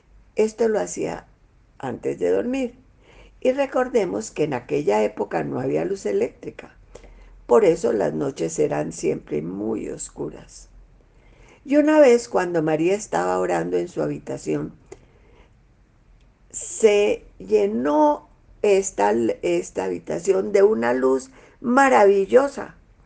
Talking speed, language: 110 wpm, Spanish